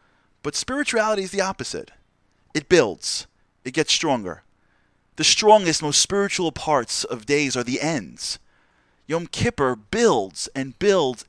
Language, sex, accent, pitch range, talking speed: English, male, American, 130-185 Hz, 135 wpm